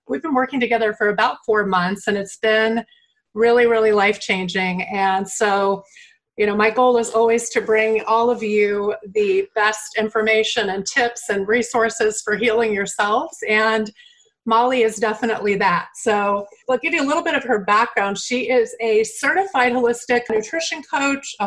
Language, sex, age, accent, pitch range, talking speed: English, female, 30-49, American, 210-255 Hz, 170 wpm